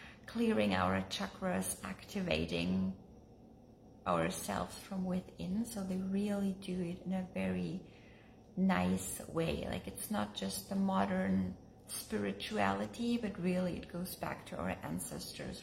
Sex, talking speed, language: female, 125 wpm, English